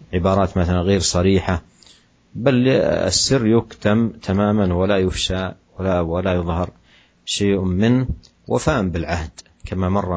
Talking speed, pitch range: 110 wpm, 85-105 Hz